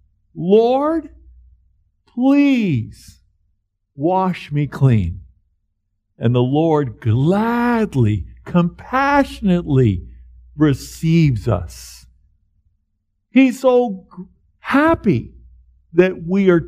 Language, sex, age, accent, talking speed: English, male, 50-69, American, 70 wpm